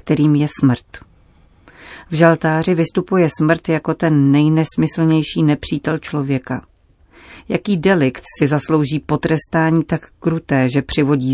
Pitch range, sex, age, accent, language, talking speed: 135-165 Hz, female, 40-59, native, Czech, 110 wpm